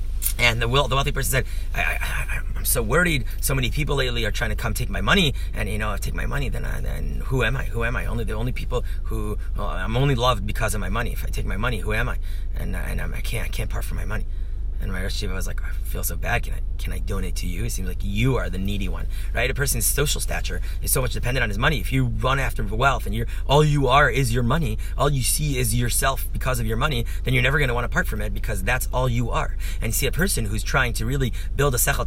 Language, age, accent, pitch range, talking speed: English, 30-49, American, 90-125 Hz, 290 wpm